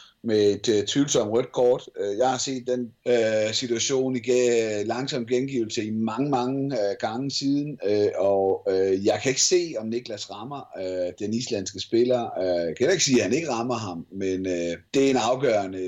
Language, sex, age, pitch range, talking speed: Danish, male, 30-49, 100-125 Hz, 195 wpm